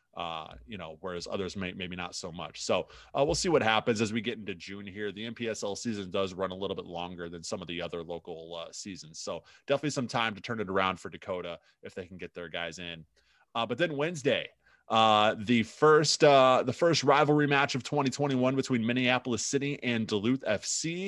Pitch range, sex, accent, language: 100-130 Hz, male, American, English